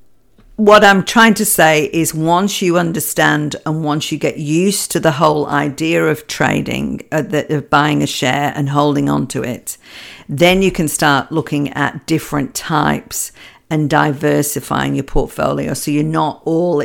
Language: English